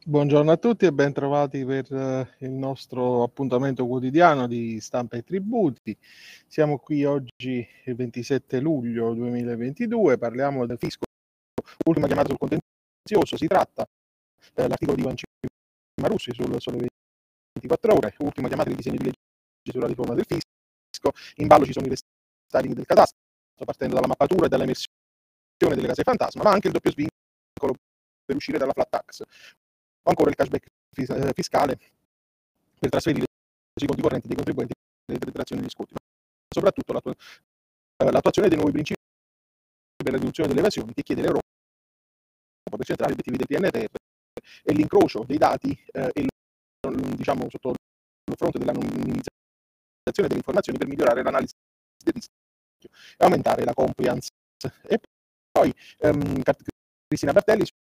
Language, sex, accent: Italian, male, native